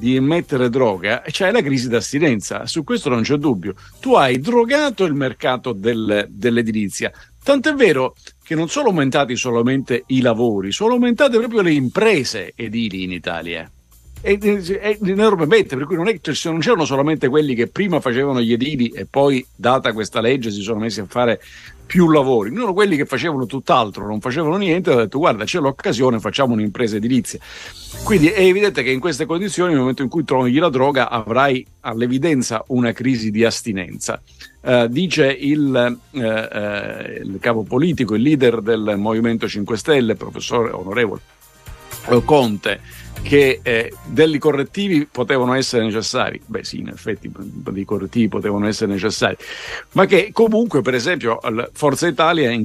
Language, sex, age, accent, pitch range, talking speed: Italian, male, 50-69, native, 115-165 Hz, 165 wpm